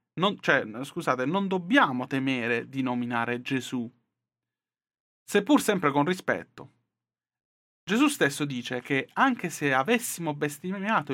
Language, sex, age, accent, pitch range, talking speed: Italian, male, 30-49, native, 125-155 Hz, 100 wpm